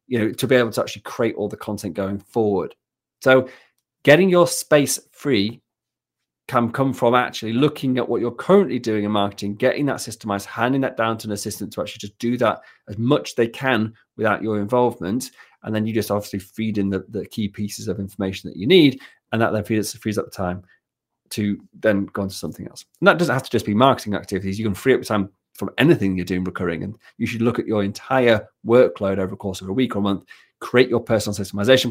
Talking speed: 230 wpm